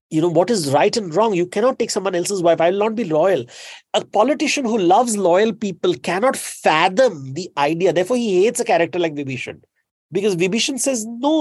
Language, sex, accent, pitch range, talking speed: English, male, Indian, 150-220 Hz, 205 wpm